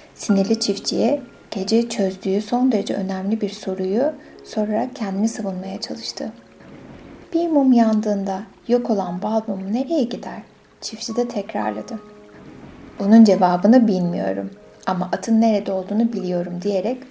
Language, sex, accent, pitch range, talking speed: Turkish, female, native, 195-230 Hz, 115 wpm